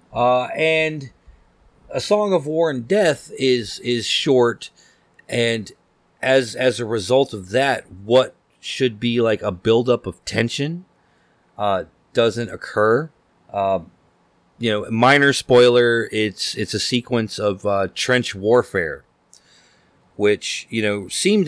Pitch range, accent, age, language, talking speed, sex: 95-120 Hz, American, 40-59, English, 130 wpm, male